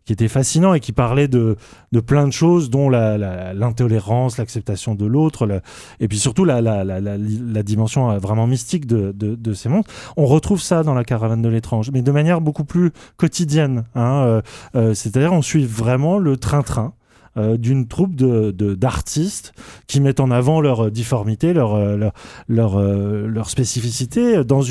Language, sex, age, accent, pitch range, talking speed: French, male, 20-39, French, 110-150 Hz, 185 wpm